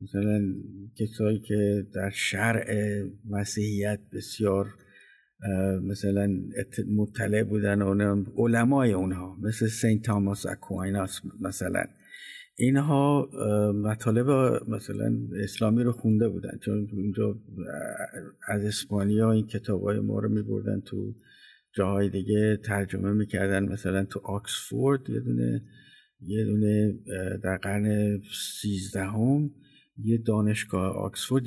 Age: 50-69